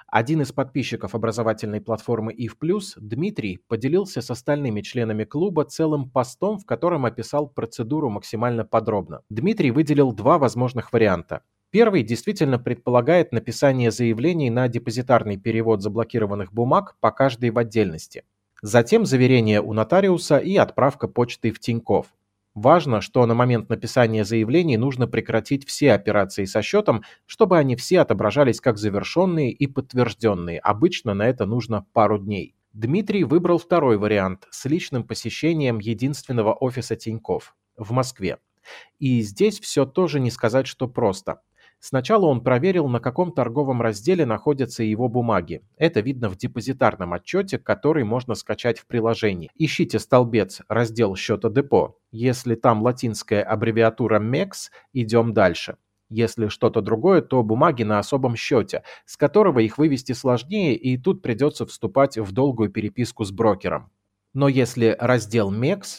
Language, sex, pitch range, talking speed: Russian, male, 110-140 Hz, 140 wpm